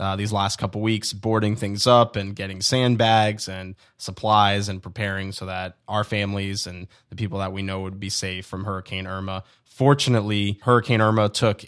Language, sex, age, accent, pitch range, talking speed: English, male, 20-39, American, 100-110 Hz, 180 wpm